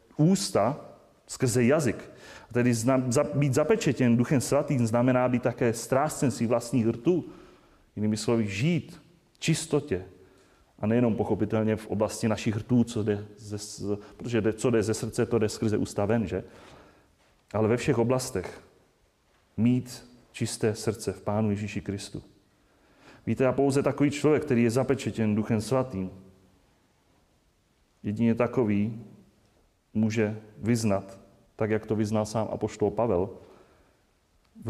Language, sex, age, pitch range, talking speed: Czech, male, 30-49, 105-130 Hz, 130 wpm